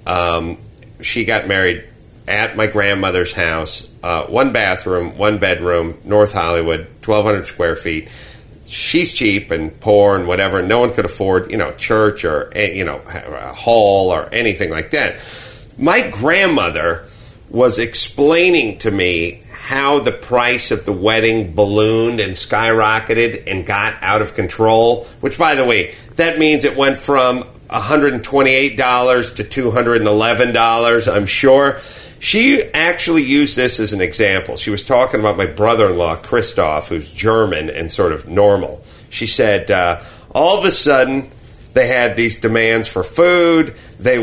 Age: 40-59